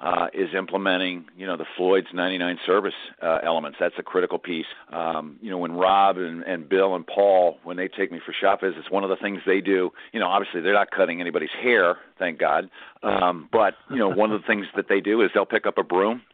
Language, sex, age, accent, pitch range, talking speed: English, male, 50-69, American, 90-105 Hz, 240 wpm